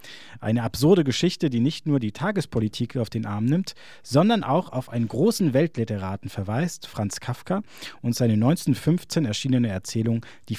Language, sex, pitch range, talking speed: German, male, 110-155 Hz, 155 wpm